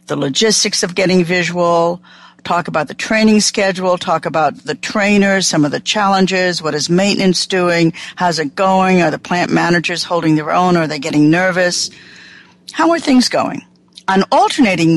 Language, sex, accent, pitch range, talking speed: English, female, American, 160-205 Hz, 170 wpm